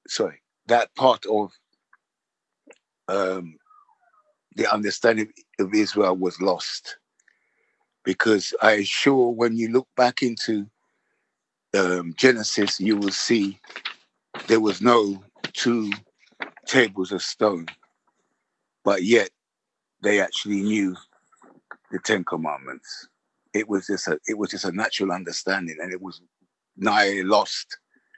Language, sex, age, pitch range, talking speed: English, male, 60-79, 100-120 Hz, 115 wpm